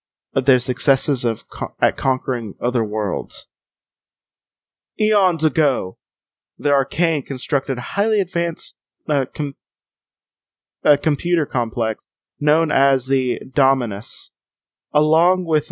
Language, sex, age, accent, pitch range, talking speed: English, male, 30-49, American, 130-165 Hz, 105 wpm